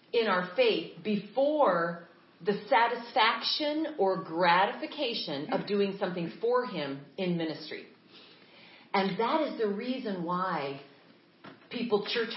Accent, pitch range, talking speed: American, 185-235 Hz, 110 wpm